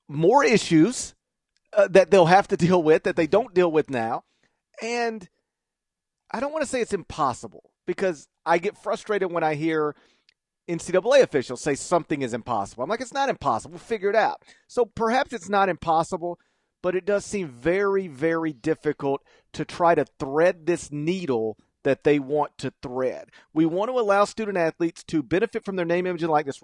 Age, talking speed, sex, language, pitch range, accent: 40-59, 185 wpm, male, English, 145-195 Hz, American